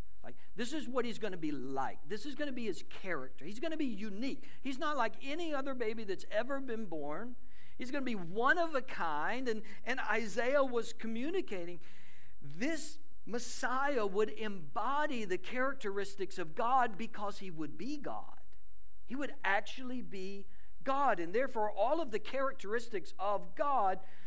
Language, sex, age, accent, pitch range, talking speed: English, male, 50-69, American, 175-250 Hz, 175 wpm